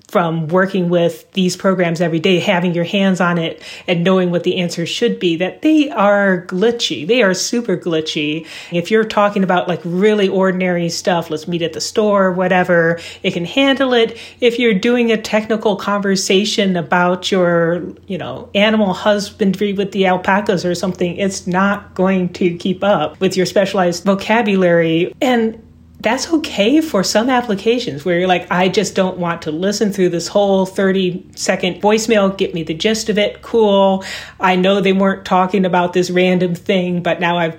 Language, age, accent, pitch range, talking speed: English, 30-49, American, 170-200 Hz, 180 wpm